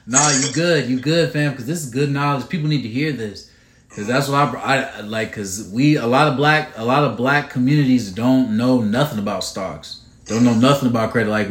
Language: English